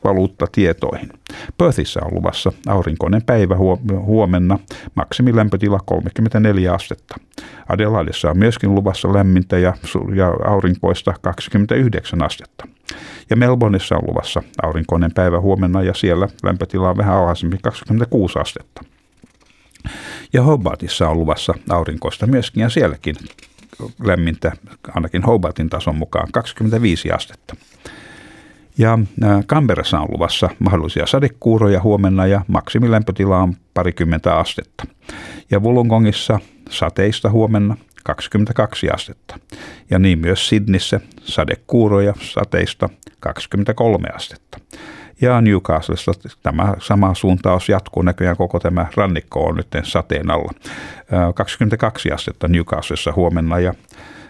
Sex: male